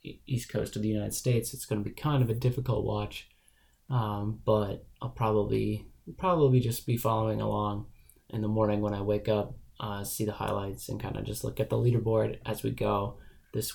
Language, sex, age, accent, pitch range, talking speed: English, male, 20-39, American, 105-130 Hz, 205 wpm